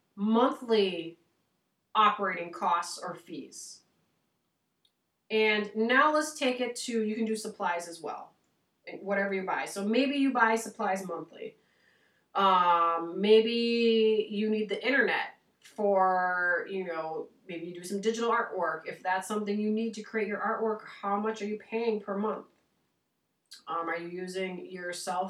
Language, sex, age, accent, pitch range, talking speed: English, female, 30-49, American, 190-240 Hz, 150 wpm